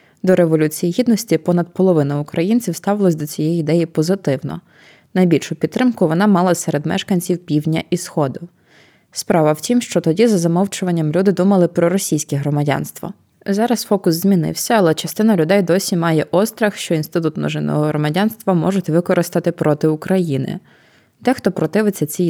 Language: Ukrainian